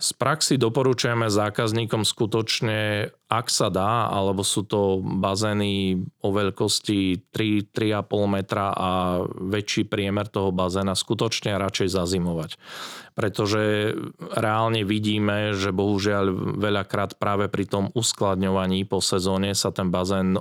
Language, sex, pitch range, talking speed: Slovak, male, 95-105 Hz, 115 wpm